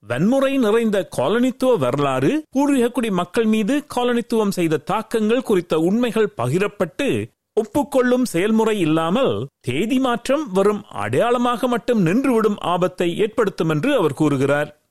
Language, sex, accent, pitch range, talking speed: Tamil, male, native, 185-250 Hz, 115 wpm